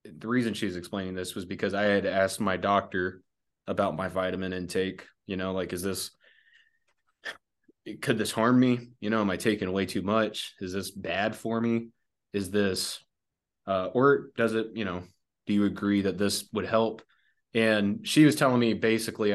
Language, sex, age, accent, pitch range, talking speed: English, male, 20-39, American, 100-130 Hz, 185 wpm